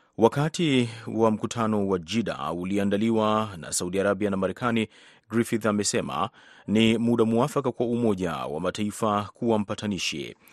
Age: 30-49